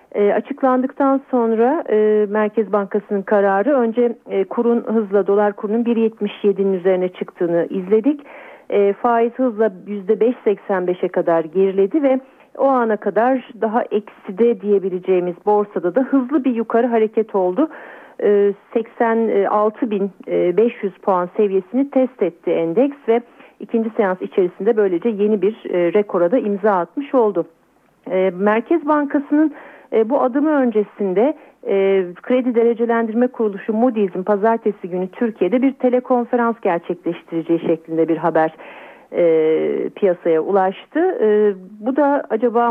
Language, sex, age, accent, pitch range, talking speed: Turkish, female, 40-59, native, 195-245 Hz, 120 wpm